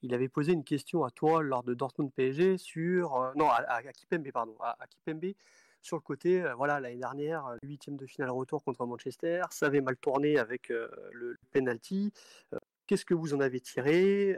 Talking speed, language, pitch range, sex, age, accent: 190 wpm, French, 125-170 Hz, male, 30-49, French